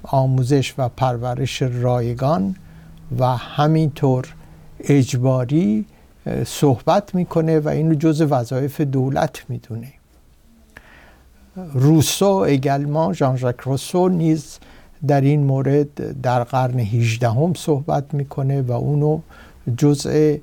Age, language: 60-79, Persian